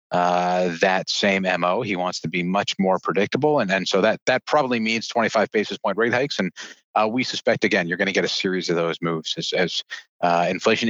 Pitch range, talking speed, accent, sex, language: 90-110 Hz, 225 wpm, American, male, English